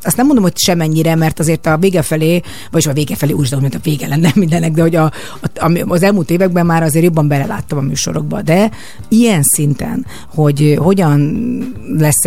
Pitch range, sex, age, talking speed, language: 145-175 Hz, female, 30-49, 190 wpm, Hungarian